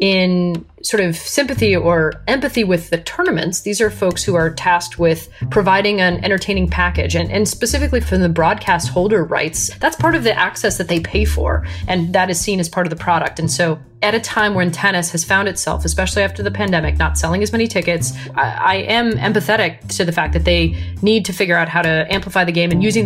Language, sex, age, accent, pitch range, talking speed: English, female, 30-49, American, 160-205 Hz, 220 wpm